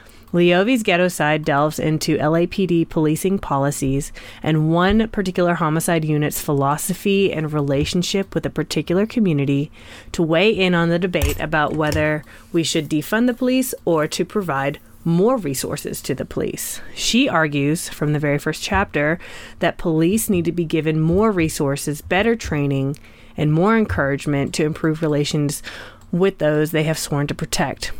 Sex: female